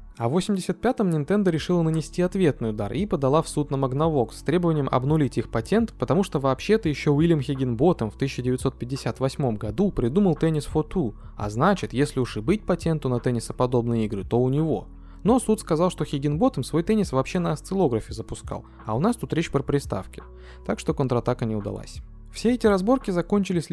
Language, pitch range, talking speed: Russian, 115-165 Hz, 180 wpm